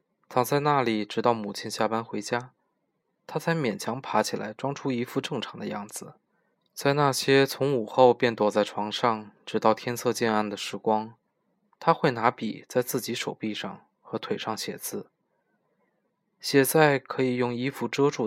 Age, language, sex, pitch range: 20-39, Chinese, male, 110-135 Hz